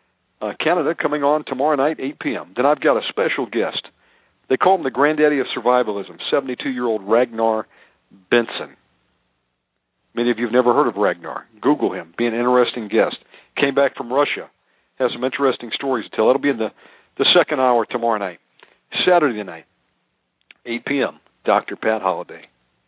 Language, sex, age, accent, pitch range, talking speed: English, male, 50-69, American, 110-135 Hz, 170 wpm